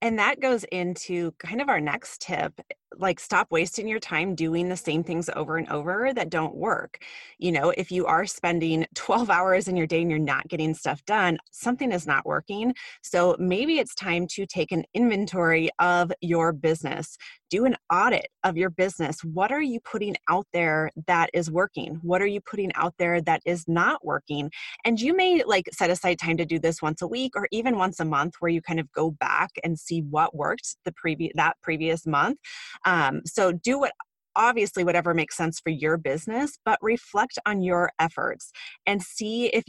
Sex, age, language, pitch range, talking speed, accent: female, 20-39, English, 165-205 Hz, 200 wpm, American